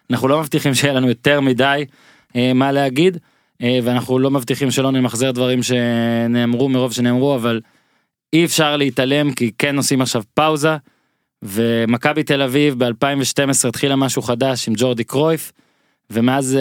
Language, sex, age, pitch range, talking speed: Hebrew, male, 20-39, 125-155 Hz, 145 wpm